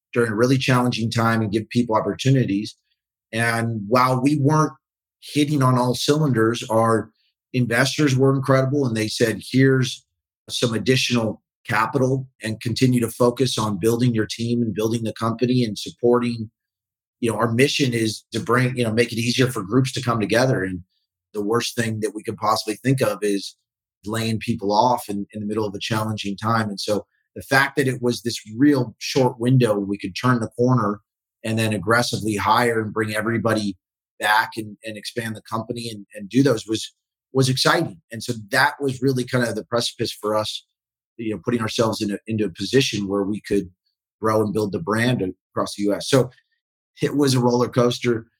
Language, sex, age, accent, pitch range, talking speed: English, male, 30-49, American, 110-125 Hz, 190 wpm